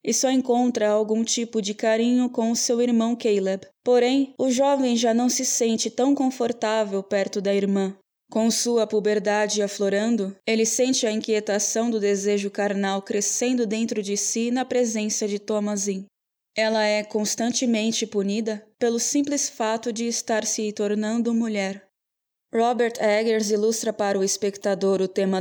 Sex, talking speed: female, 145 wpm